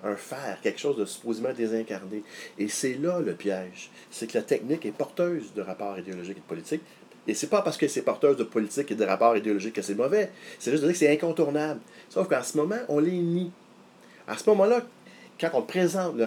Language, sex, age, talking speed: French, male, 30-49, 225 wpm